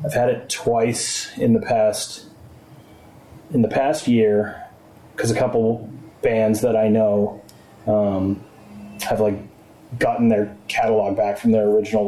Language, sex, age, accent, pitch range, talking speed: English, male, 30-49, American, 110-140 Hz, 140 wpm